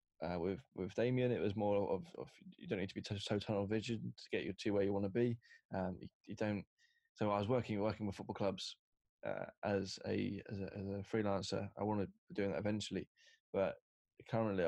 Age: 20-39